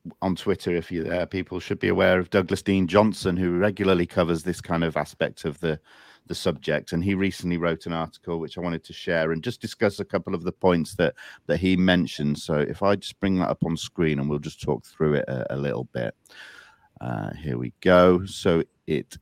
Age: 40-59